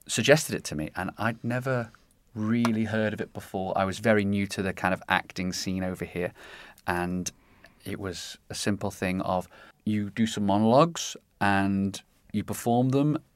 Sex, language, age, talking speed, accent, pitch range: male, English, 30-49, 175 wpm, British, 90-105 Hz